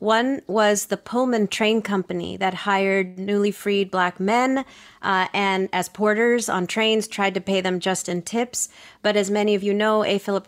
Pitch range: 180-205 Hz